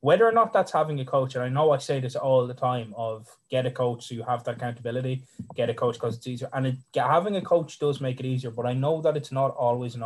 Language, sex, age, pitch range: English, male, 20-39, 120-130 Hz